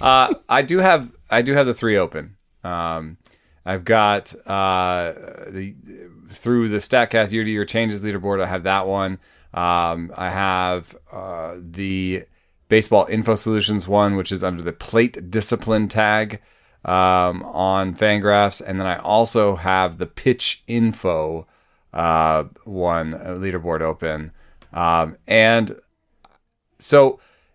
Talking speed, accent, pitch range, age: 135 wpm, American, 90-115 Hz, 30-49